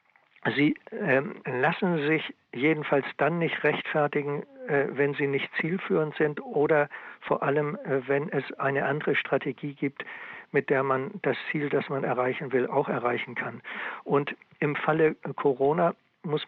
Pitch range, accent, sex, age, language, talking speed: 140-170 Hz, German, male, 60-79, German, 140 wpm